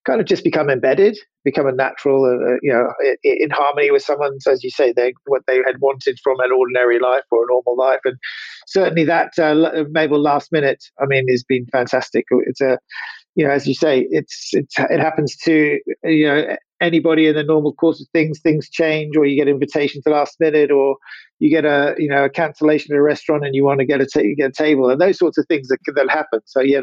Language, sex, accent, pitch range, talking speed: English, male, British, 140-165 Hz, 240 wpm